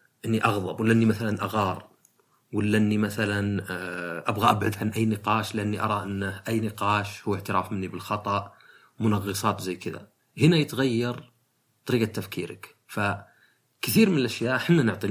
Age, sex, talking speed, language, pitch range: 40-59, male, 130 wpm, Arabic, 105-130 Hz